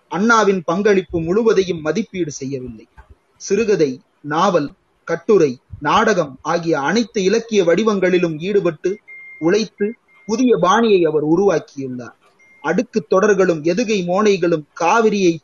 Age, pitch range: 30-49, 170-220 Hz